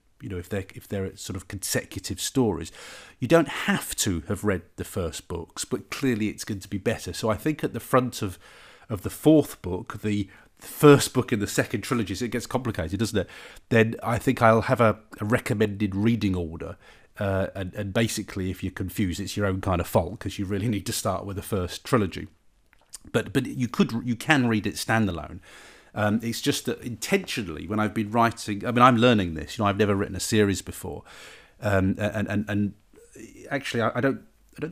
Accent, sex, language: British, male, English